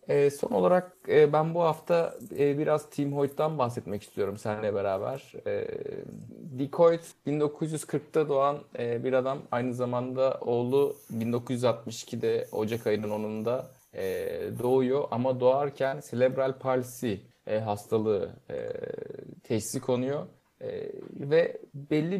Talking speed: 90 wpm